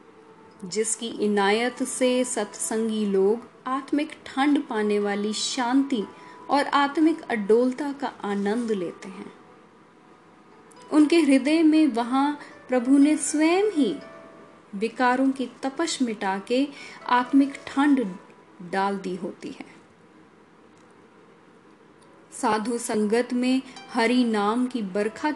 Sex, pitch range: female, 215-280 Hz